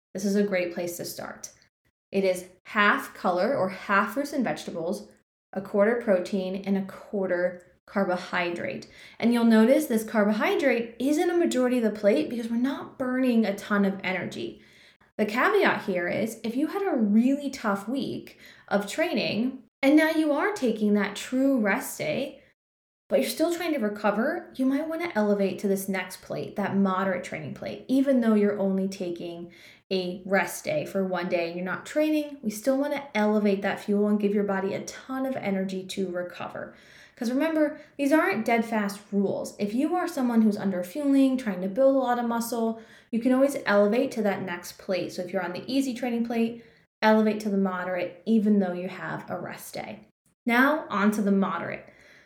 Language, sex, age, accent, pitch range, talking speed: English, female, 20-39, American, 195-265 Hz, 195 wpm